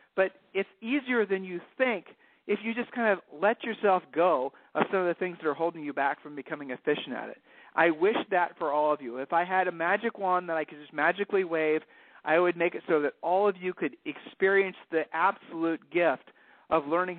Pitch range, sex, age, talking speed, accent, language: 155-195 Hz, male, 50-69, 225 wpm, American, English